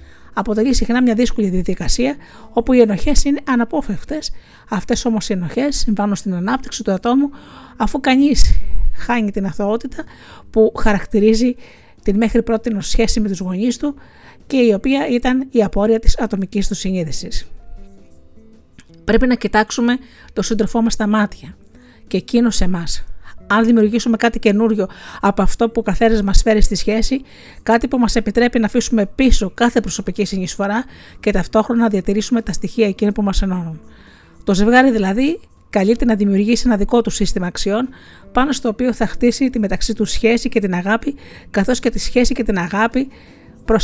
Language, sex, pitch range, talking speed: Greek, female, 195-240 Hz, 165 wpm